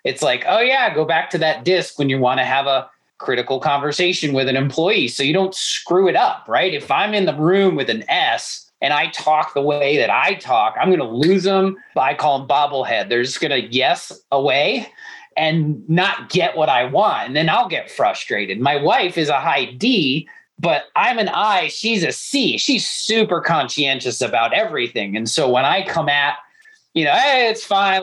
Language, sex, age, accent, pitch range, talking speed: English, male, 30-49, American, 150-195 Hz, 210 wpm